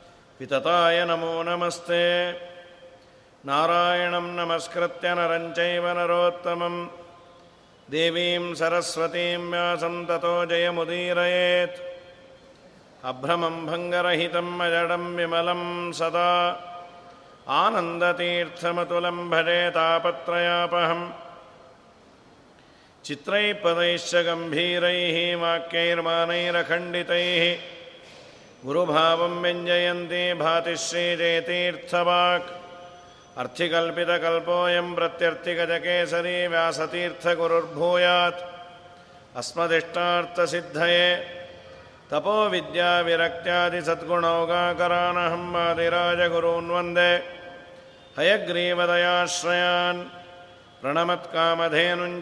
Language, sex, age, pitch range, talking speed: Kannada, male, 50-69, 170-175 Hz, 40 wpm